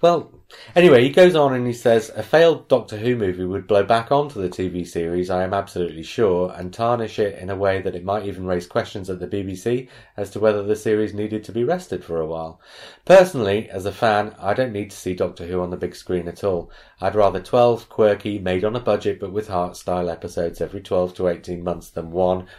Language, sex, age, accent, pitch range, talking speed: English, male, 30-49, British, 90-110 Hz, 230 wpm